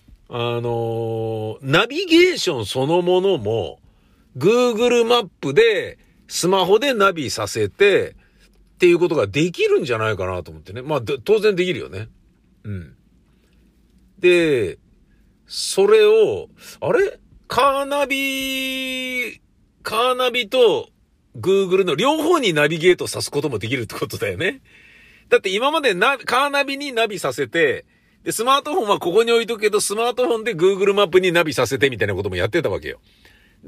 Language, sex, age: Japanese, male, 50-69